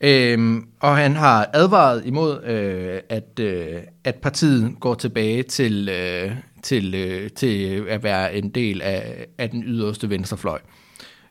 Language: Danish